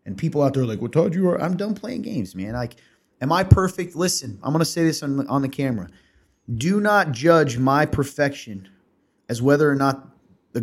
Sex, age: male, 30-49